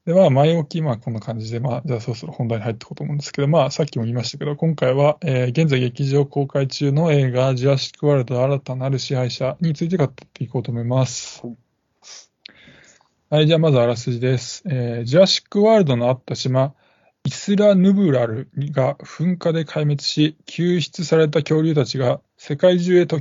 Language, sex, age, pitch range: Japanese, male, 20-39, 130-160 Hz